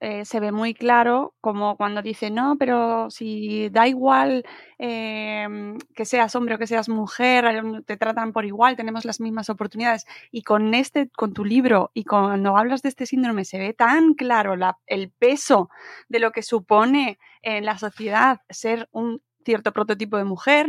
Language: Spanish